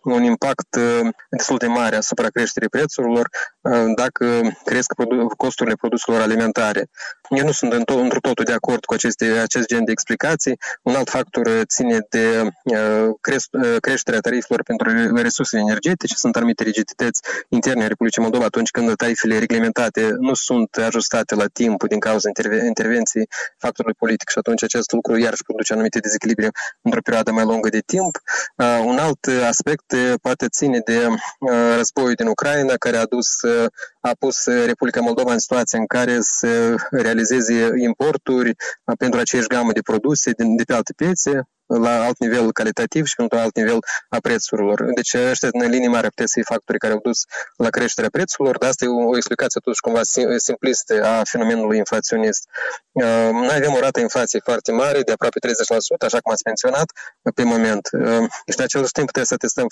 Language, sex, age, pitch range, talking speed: Romanian, male, 20-39, 115-125 Hz, 165 wpm